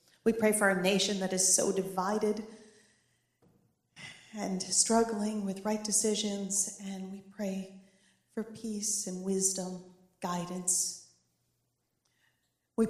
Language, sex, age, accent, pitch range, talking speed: English, female, 40-59, American, 185-215 Hz, 105 wpm